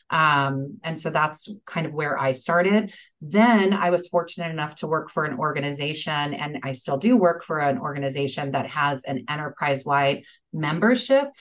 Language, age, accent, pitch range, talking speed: English, 30-49, American, 150-185 Hz, 170 wpm